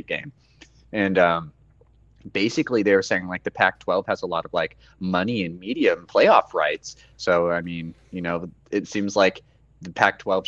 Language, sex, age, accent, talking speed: English, male, 20-39, American, 190 wpm